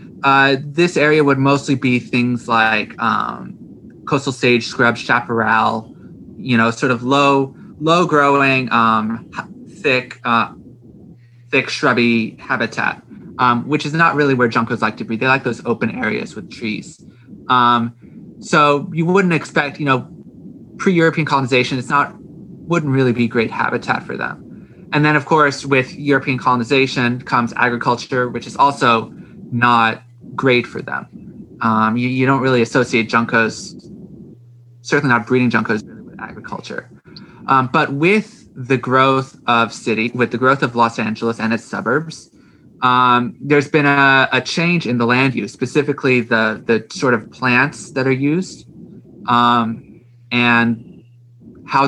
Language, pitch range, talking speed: English, 120-145 Hz, 150 wpm